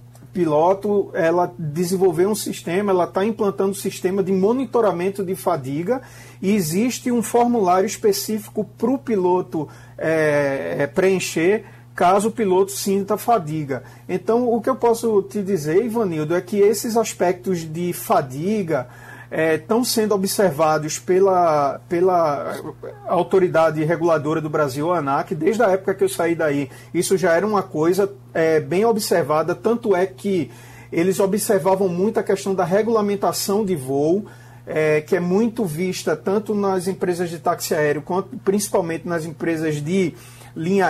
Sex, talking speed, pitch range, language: male, 145 wpm, 160-200 Hz, Portuguese